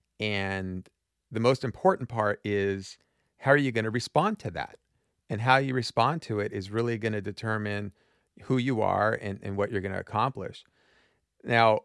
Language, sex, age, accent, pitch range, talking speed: English, male, 40-59, American, 100-115 Hz, 180 wpm